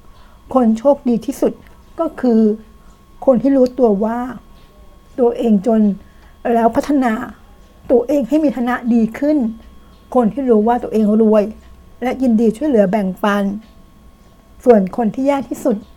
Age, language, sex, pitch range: 60-79, Thai, female, 215-255 Hz